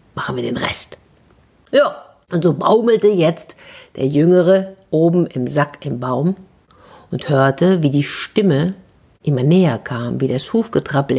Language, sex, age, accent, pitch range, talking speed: German, female, 50-69, German, 155-215 Hz, 145 wpm